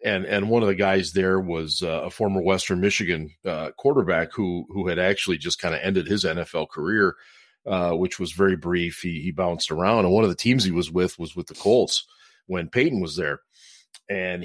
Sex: male